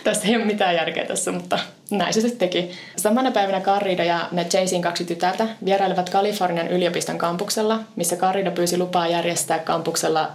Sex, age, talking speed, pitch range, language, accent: female, 20-39, 170 wpm, 170-195 Hz, Finnish, native